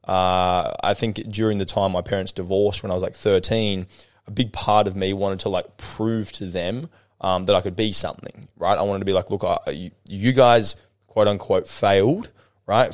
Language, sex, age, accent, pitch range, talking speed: English, male, 20-39, Australian, 95-105 Hz, 210 wpm